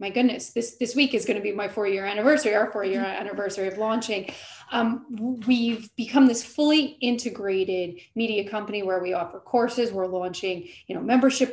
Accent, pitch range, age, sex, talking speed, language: American, 190-230 Hz, 30-49, female, 185 wpm, English